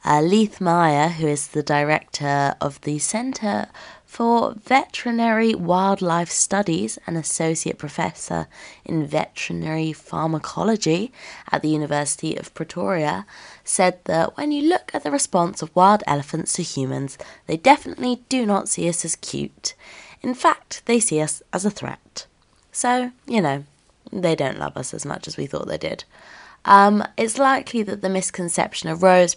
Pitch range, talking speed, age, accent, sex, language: 150-210 Hz, 155 wpm, 20-39, British, female, English